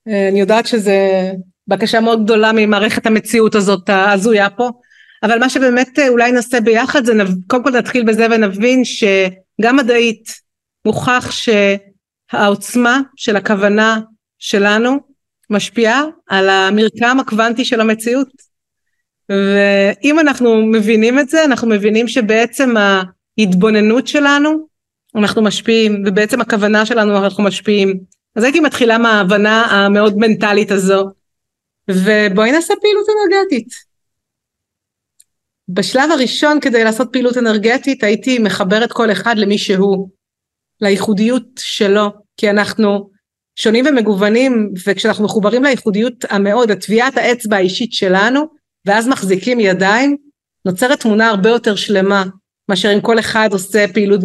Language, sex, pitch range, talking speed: Hebrew, female, 200-245 Hz, 115 wpm